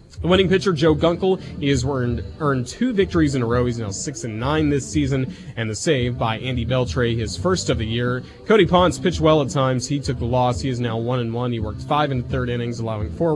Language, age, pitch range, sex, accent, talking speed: English, 30-49, 120-150 Hz, male, American, 245 wpm